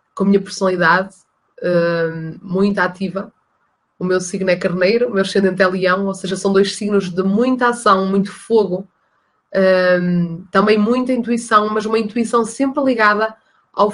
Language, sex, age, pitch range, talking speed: Portuguese, female, 20-39, 195-230 Hz, 150 wpm